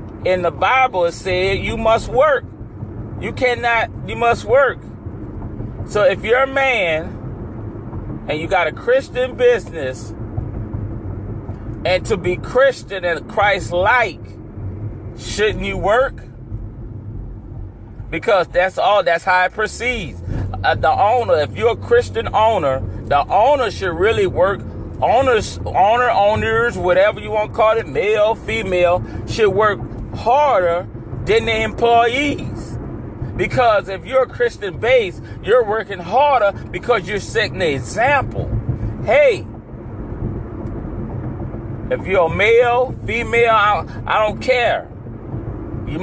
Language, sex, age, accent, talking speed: English, male, 30-49, American, 120 wpm